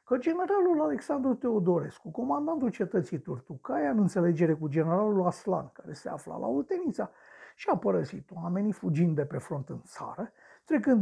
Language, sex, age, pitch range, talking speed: Romanian, male, 60-79, 155-215 Hz, 145 wpm